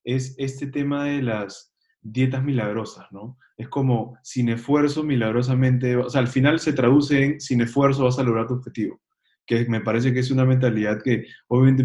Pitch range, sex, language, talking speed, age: 115-135 Hz, male, Spanish, 180 wpm, 20-39